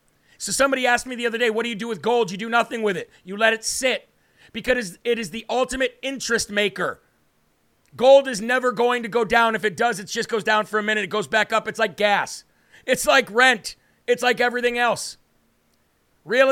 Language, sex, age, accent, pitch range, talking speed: English, male, 40-59, American, 205-240 Hz, 220 wpm